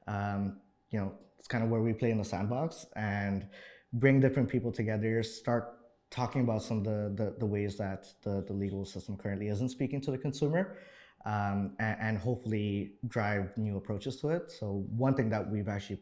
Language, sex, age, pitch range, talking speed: English, male, 20-39, 100-120 Hz, 195 wpm